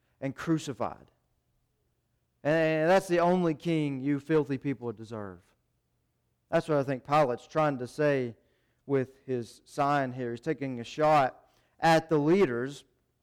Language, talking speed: English, 135 wpm